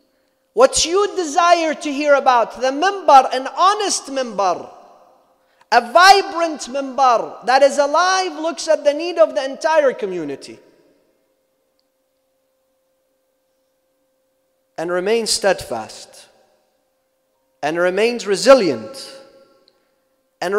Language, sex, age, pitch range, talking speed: English, male, 40-59, 260-320 Hz, 95 wpm